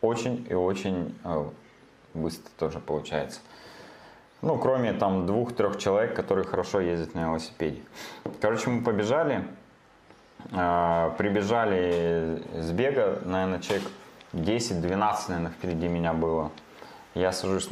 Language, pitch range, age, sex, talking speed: Russian, 85-100 Hz, 20-39, male, 105 wpm